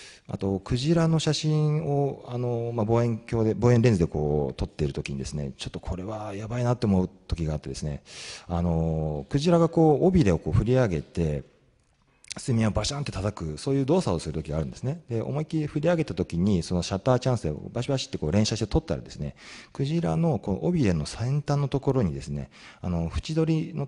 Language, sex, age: Japanese, male, 40-59